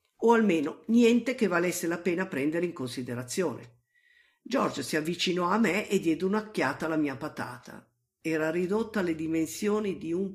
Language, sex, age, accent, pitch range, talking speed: Italian, female, 50-69, native, 155-225 Hz, 155 wpm